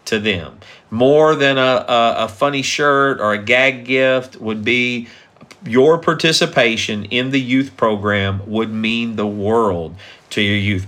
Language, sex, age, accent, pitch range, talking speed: English, male, 50-69, American, 105-135 Hz, 155 wpm